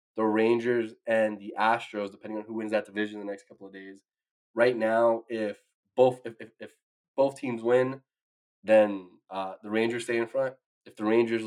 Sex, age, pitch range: male, 20-39, 105-125 Hz